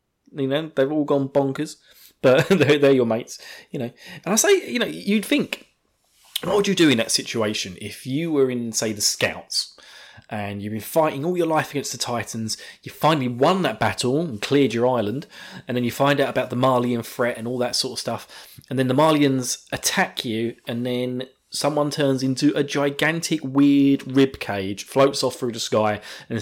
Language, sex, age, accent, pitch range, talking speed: English, male, 20-39, British, 125-170 Hz, 205 wpm